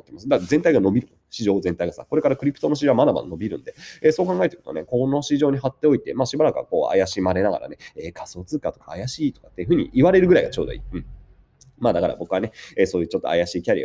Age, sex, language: 30-49, male, Japanese